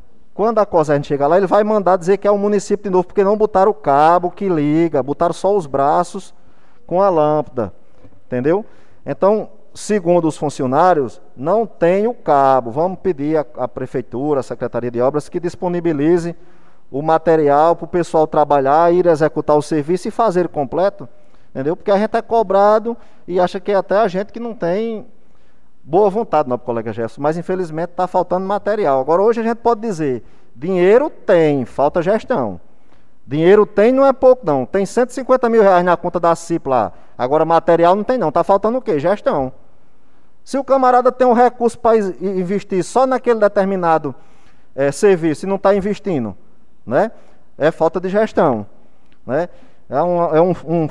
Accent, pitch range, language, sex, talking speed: Brazilian, 150-205 Hz, Portuguese, male, 180 wpm